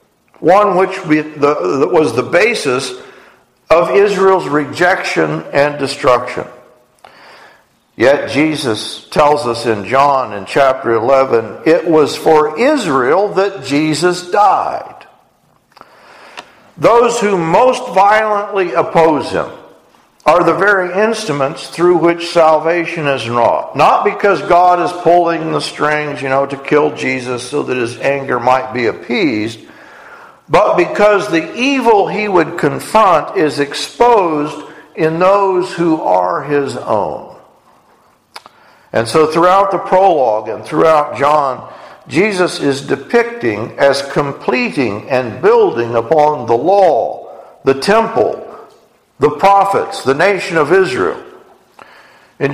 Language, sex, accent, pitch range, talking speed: English, male, American, 140-190 Hz, 115 wpm